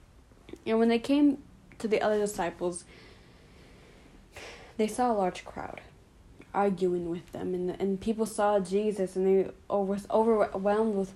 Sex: female